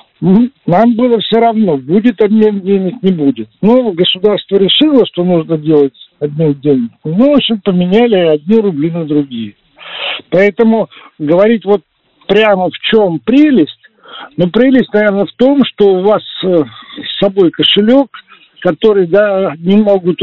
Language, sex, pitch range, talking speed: Russian, male, 165-215 Hz, 140 wpm